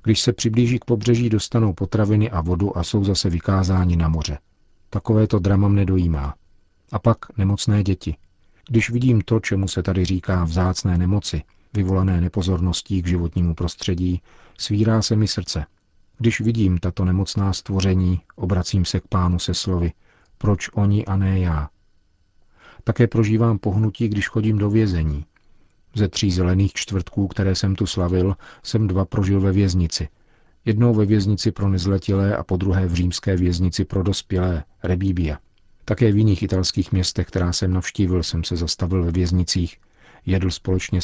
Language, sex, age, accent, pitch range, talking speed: Czech, male, 40-59, native, 90-105 Hz, 155 wpm